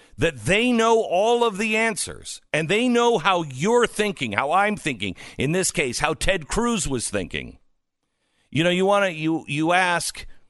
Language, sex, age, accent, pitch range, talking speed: English, male, 50-69, American, 110-175 Hz, 185 wpm